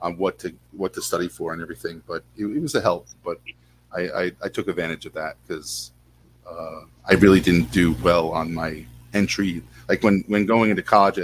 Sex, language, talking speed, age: male, English, 210 wpm, 40-59